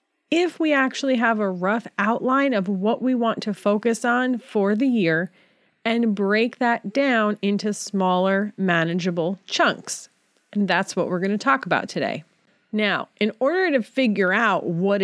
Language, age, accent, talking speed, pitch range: English, 30-49, American, 165 wpm, 180-235 Hz